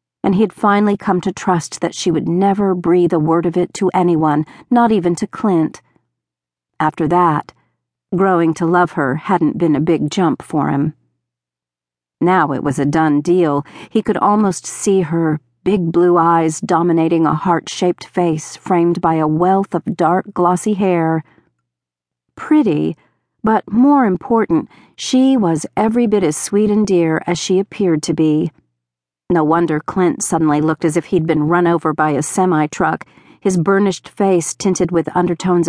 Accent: American